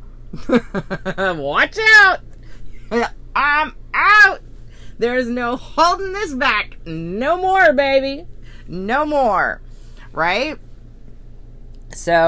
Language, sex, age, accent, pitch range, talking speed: English, female, 30-49, American, 120-185 Hz, 80 wpm